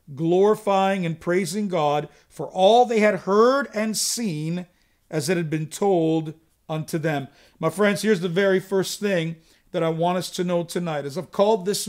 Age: 50-69